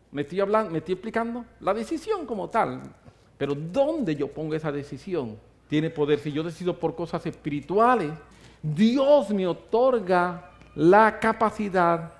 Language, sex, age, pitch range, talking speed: English, male, 50-69, 150-200 Hz, 135 wpm